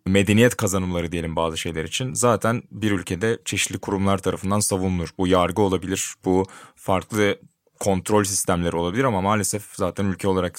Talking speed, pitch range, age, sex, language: 145 wpm, 90-105 Hz, 20-39, male, Turkish